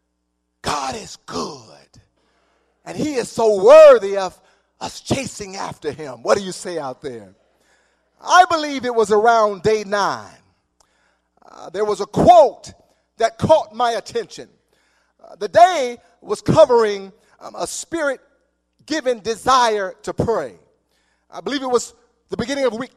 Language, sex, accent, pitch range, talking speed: English, male, American, 175-280 Hz, 140 wpm